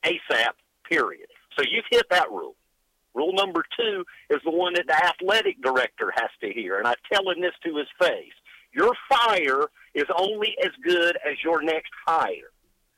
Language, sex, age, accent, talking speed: English, male, 50-69, American, 170 wpm